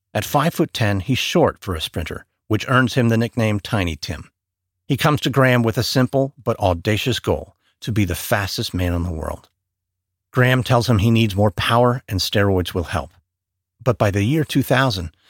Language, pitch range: English, 95-130 Hz